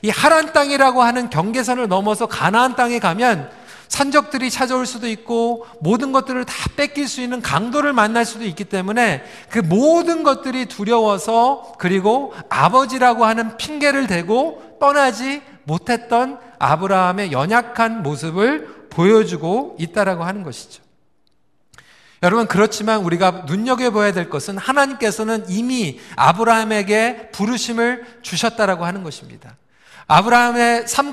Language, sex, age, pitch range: Korean, male, 40-59, 195-255 Hz